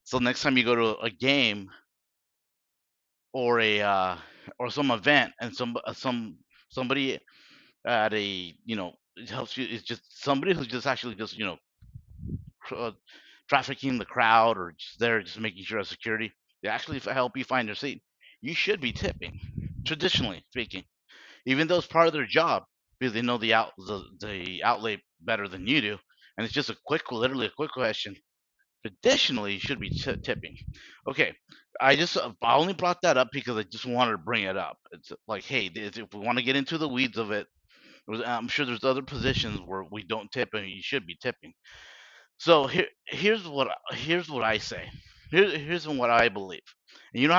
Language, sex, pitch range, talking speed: English, male, 105-135 Hz, 195 wpm